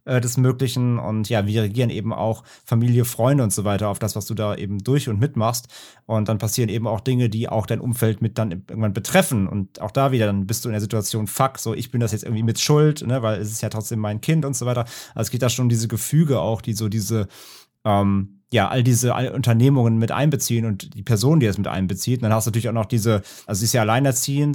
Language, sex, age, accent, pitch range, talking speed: German, male, 30-49, German, 110-145 Hz, 255 wpm